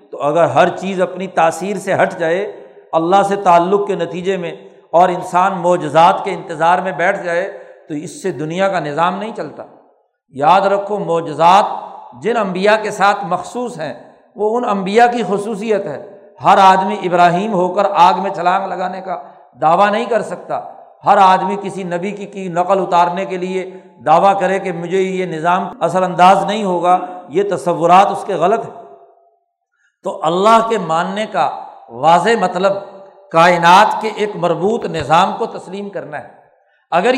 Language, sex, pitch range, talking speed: Urdu, male, 175-210 Hz, 165 wpm